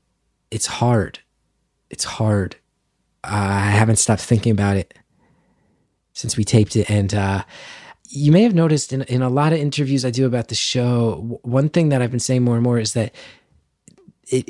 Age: 20-39